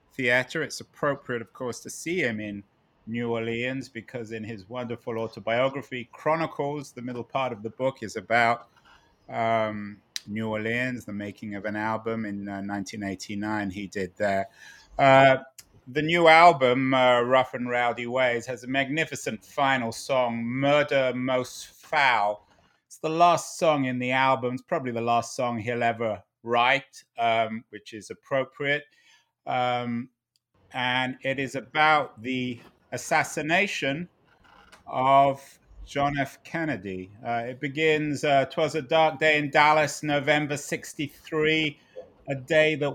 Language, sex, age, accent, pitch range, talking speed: English, male, 30-49, British, 115-140 Hz, 140 wpm